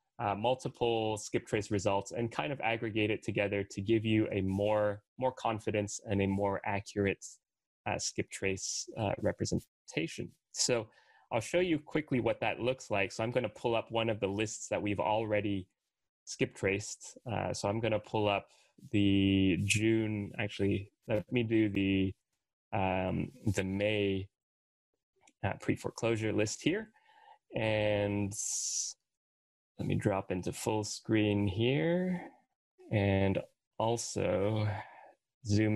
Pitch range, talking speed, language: 100-120 Hz, 140 wpm, English